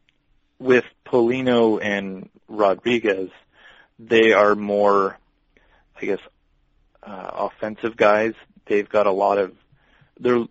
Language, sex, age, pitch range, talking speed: English, male, 20-39, 95-110 Hz, 105 wpm